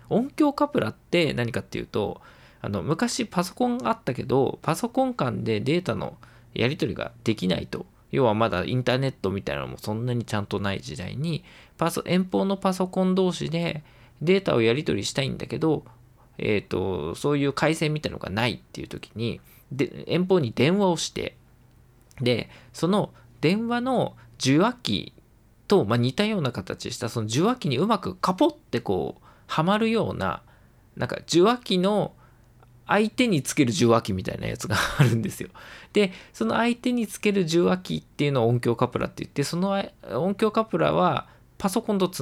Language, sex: Japanese, male